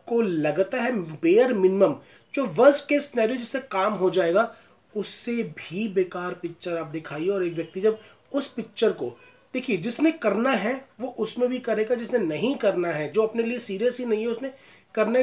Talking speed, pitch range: 180 wpm, 180-245 Hz